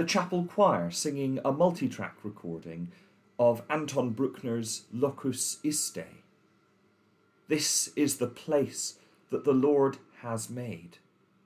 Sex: male